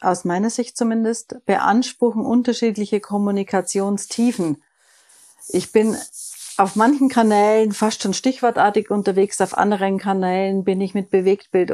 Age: 50-69